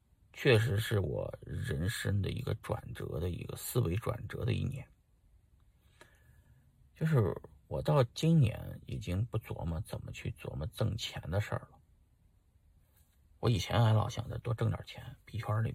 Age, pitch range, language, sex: 50-69, 90-120 Hz, Chinese, male